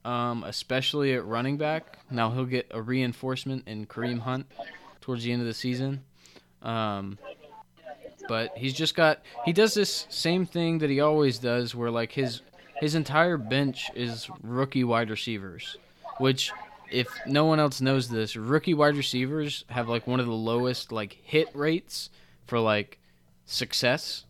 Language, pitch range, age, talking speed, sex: English, 115-145 Hz, 20-39, 165 wpm, male